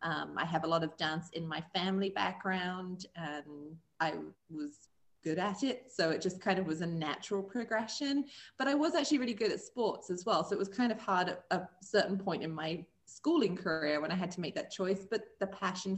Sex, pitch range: female, 155-200 Hz